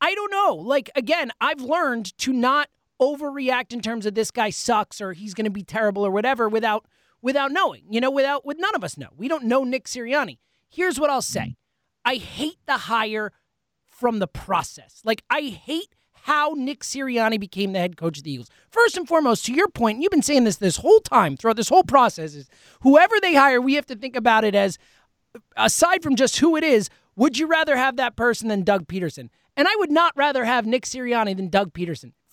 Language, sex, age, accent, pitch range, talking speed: English, male, 30-49, American, 215-290 Hz, 220 wpm